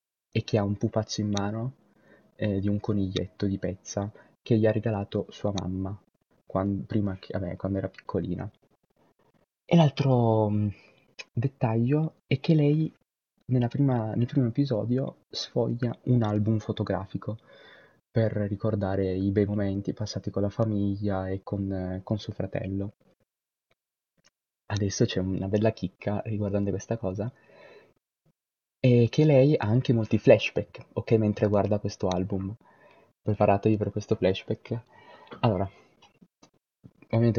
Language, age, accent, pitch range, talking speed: Italian, 20-39, native, 100-120 Hz, 130 wpm